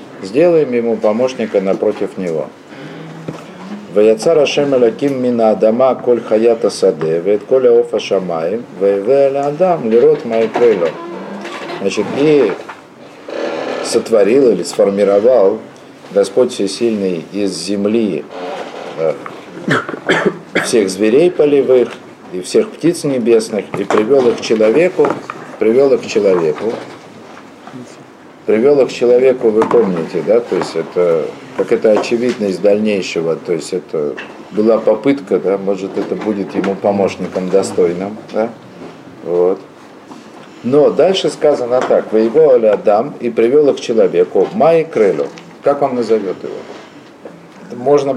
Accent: native